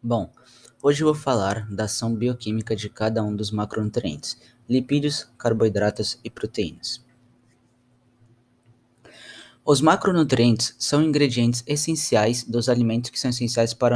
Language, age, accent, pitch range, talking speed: Portuguese, 20-39, Brazilian, 110-130 Hz, 120 wpm